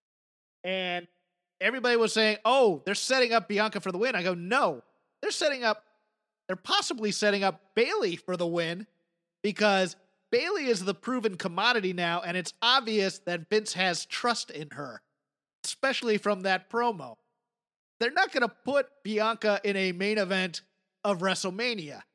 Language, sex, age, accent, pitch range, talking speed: English, male, 30-49, American, 180-225 Hz, 155 wpm